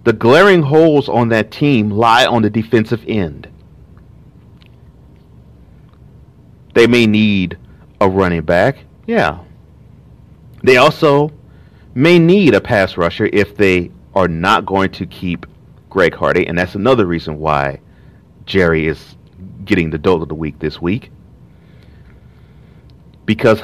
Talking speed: 125 wpm